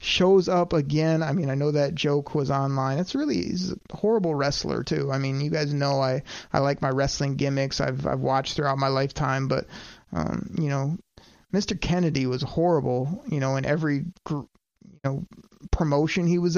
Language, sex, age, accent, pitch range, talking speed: English, male, 30-49, American, 140-185 Hz, 190 wpm